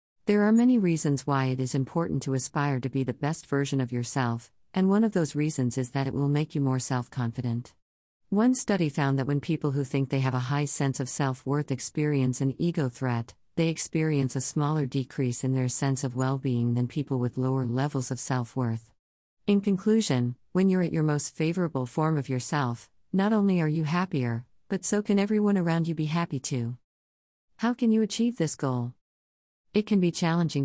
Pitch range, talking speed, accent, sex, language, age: 130-170 Hz, 200 wpm, American, female, English, 50-69